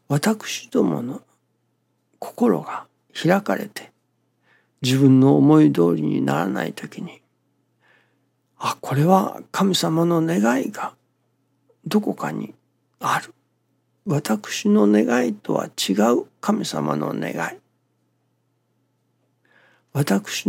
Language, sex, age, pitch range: Japanese, male, 60-79, 120-150 Hz